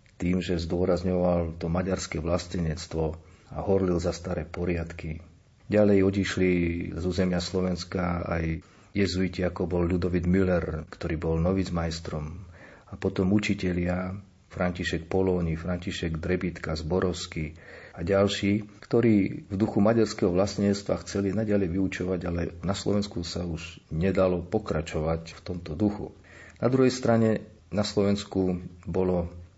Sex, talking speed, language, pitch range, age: male, 120 wpm, Slovak, 85-100 Hz, 40-59